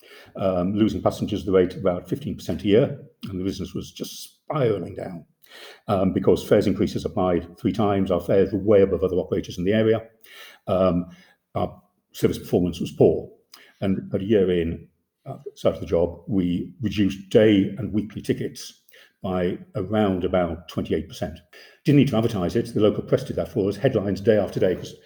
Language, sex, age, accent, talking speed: English, male, 50-69, British, 185 wpm